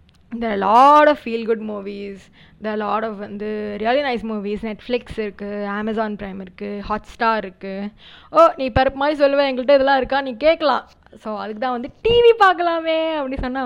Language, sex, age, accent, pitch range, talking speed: Tamil, female, 20-39, native, 210-280 Hz, 195 wpm